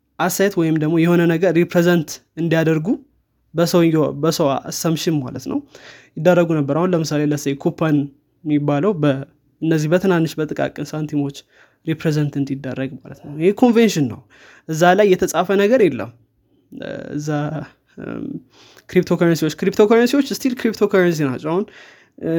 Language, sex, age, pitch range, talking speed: Amharic, male, 20-39, 150-175 Hz, 100 wpm